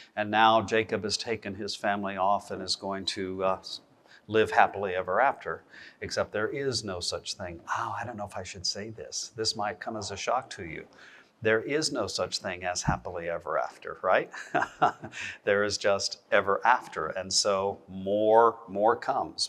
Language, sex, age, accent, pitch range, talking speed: English, male, 50-69, American, 100-135 Hz, 185 wpm